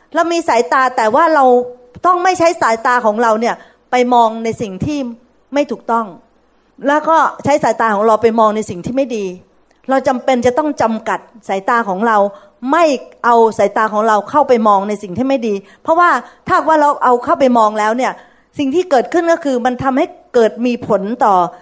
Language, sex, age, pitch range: Thai, female, 30-49, 215-285 Hz